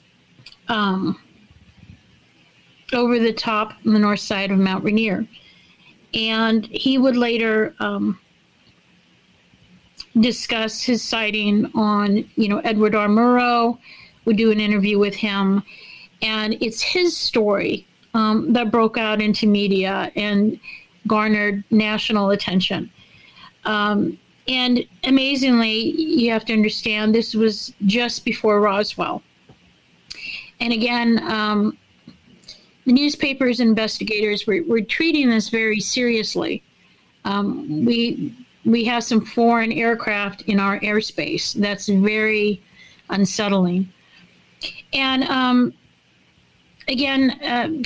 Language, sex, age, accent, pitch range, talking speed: English, female, 50-69, American, 210-235 Hz, 110 wpm